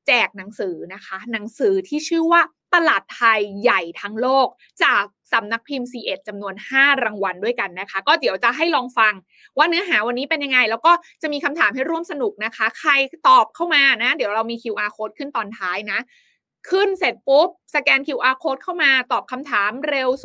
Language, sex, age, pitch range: Thai, female, 20-39, 225-305 Hz